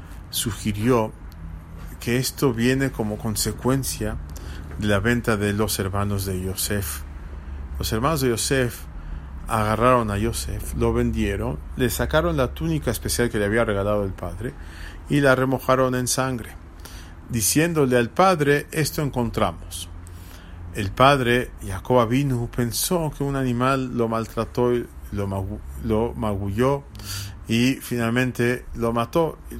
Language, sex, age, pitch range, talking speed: English, male, 40-59, 90-125 Hz, 125 wpm